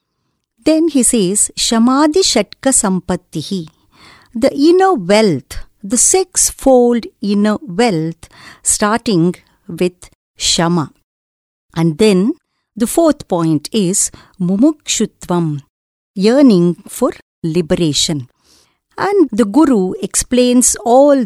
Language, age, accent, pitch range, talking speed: English, 50-69, Indian, 180-265 Hz, 90 wpm